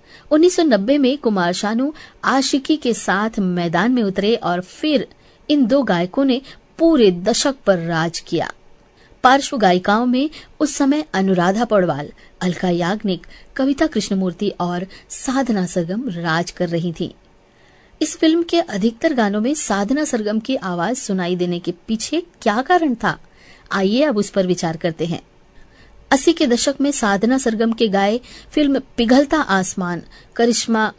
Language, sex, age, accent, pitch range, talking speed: Hindi, female, 20-39, native, 190-265 Hz, 145 wpm